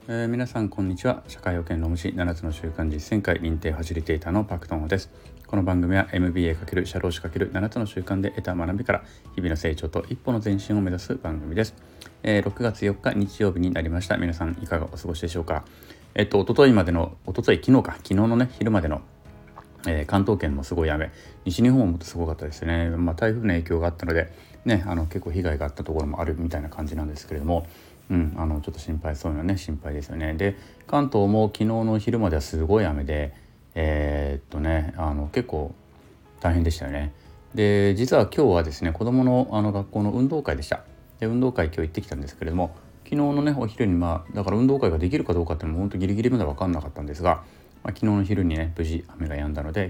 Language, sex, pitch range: Japanese, male, 80-105 Hz